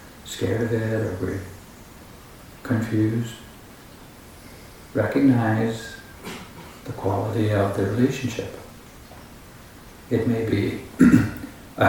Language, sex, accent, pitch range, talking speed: English, male, American, 105-120 Hz, 80 wpm